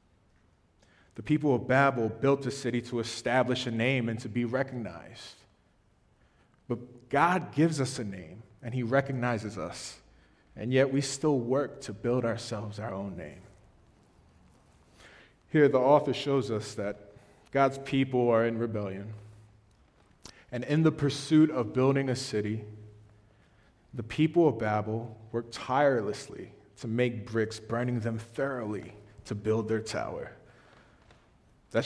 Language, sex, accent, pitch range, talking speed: English, male, American, 105-130 Hz, 135 wpm